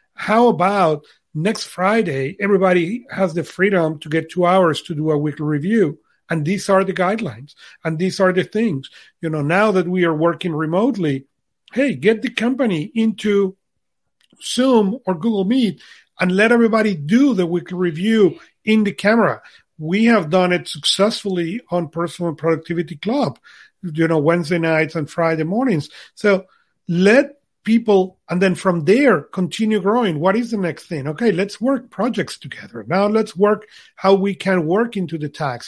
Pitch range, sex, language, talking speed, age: 165-210 Hz, male, English, 165 wpm, 40-59